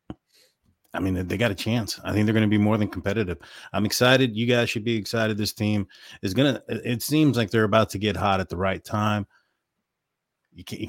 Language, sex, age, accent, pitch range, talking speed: English, male, 30-49, American, 100-120 Hz, 220 wpm